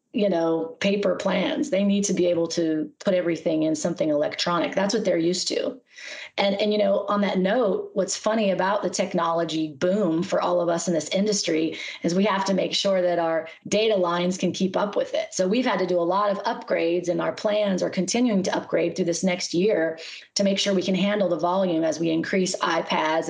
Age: 30-49